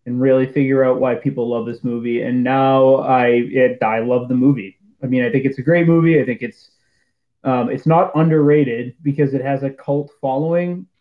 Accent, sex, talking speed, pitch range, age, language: American, male, 205 wpm, 125-150 Hz, 20-39, English